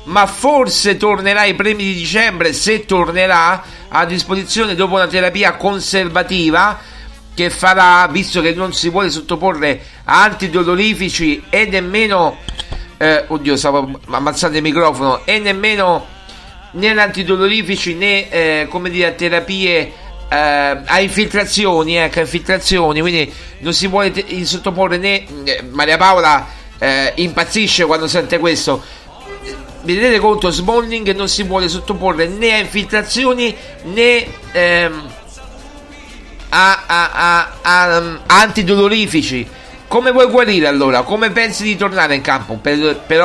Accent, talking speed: native, 130 wpm